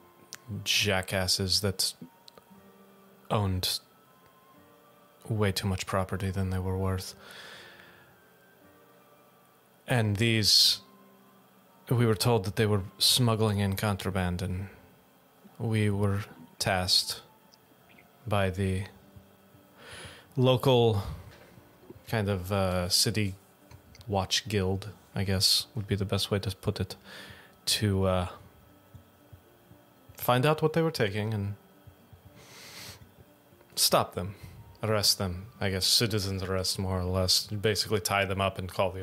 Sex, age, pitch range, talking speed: male, 30-49, 95-110 Hz, 110 wpm